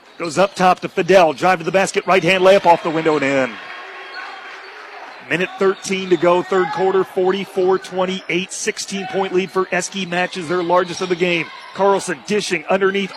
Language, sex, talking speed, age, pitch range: English, male, 175 wpm, 40-59, 175-195 Hz